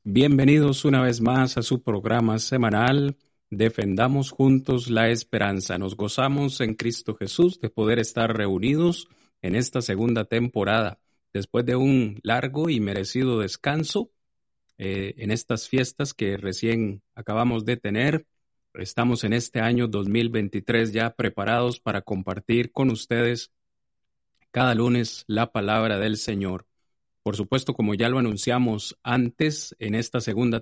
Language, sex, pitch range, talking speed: Spanish, male, 105-125 Hz, 135 wpm